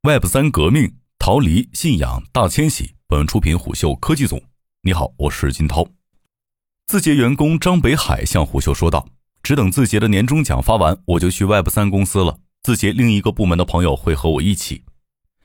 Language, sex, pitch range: Chinese, male, 80-120 Hz